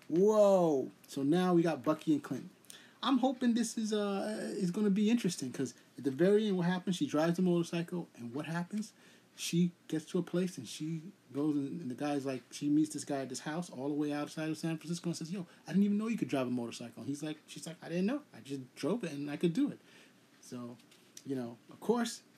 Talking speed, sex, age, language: 250 wpm, male, 30-49, English